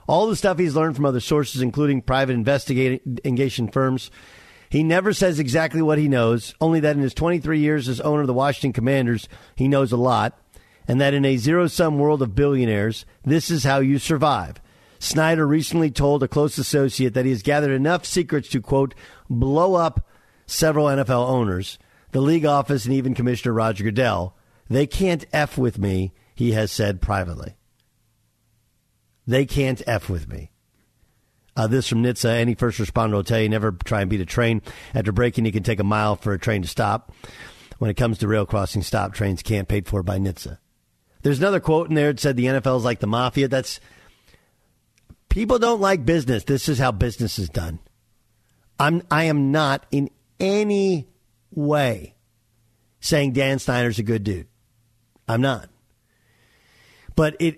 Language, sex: English, male